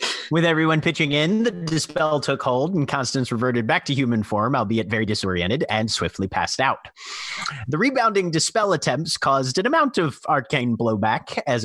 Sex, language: male, English